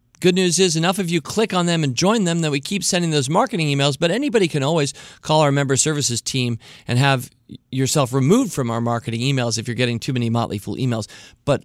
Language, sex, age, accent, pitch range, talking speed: English, male, 40-59, American, 125-180 Hz, 230 wpm